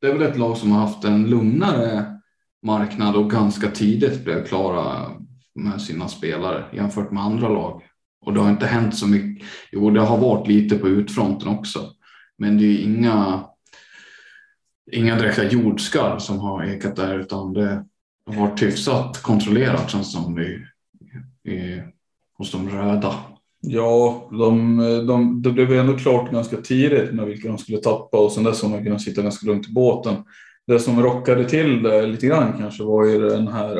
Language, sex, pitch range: Swedish, male, 105-115 Hz